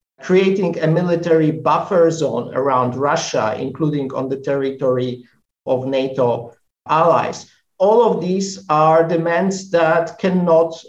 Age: 50-69